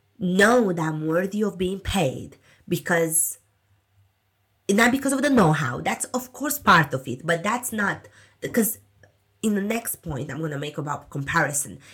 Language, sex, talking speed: English, female, 170 wpm